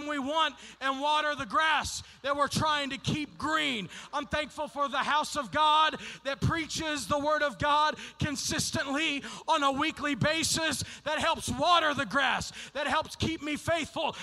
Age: 40-59